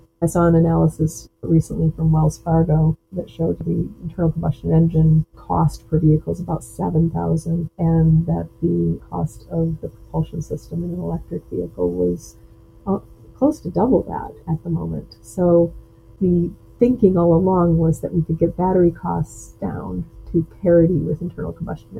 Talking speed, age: 160 wpm, 40-59